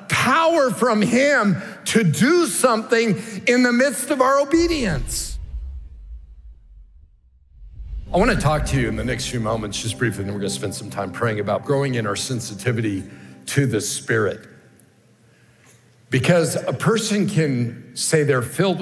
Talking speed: 155 wpm